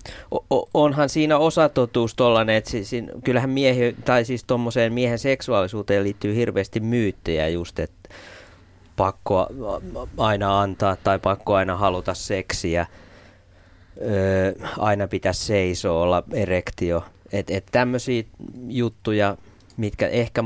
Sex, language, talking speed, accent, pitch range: male, Finnish, 110 wpm, native, 90-105 Hz